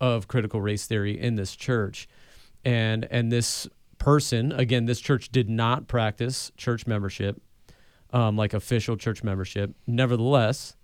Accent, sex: American, male